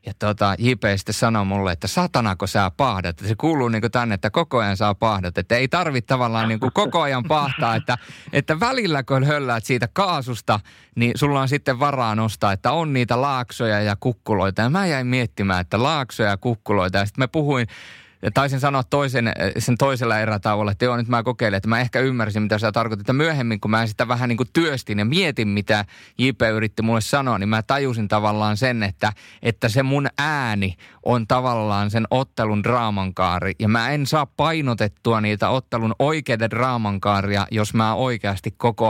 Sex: male